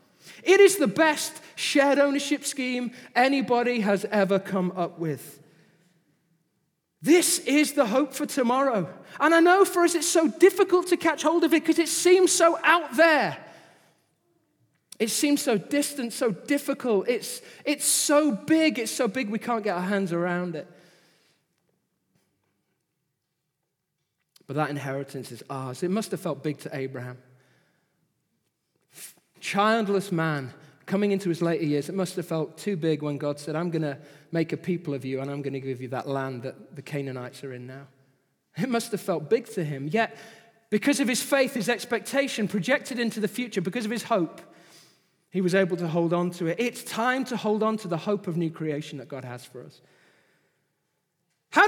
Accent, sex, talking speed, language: British, male, 180 wpm, English